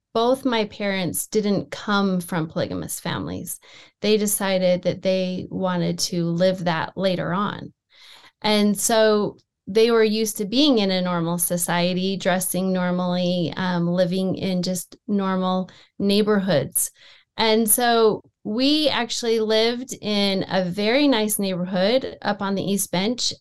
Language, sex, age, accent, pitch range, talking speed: English, female, 30-49, American, 185-225 Hz, 135 wpm